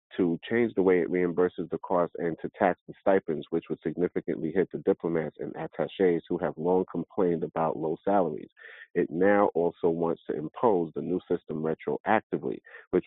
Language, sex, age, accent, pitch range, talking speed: English, male, 40-59, American, 80-90 Hz, 180 wpm